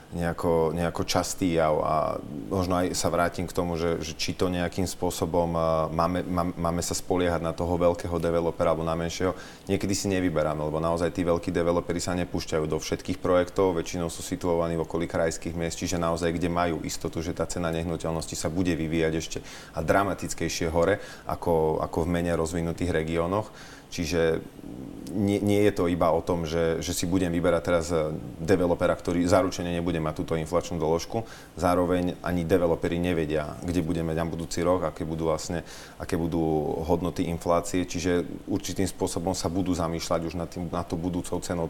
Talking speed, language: 175 wpm, Slovak